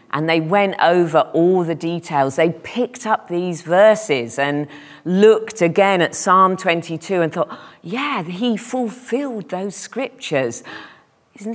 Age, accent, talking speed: 40-59, British, 135 wpm